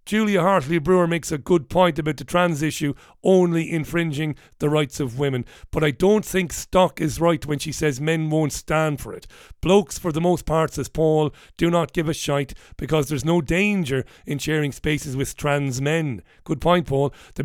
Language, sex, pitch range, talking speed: English, male, 140-170 Hz, 200 wpm